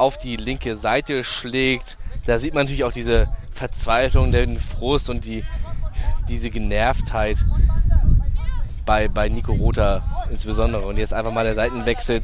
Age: 20-39